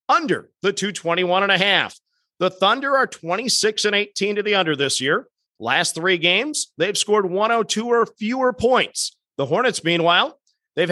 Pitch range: 175-245 Hz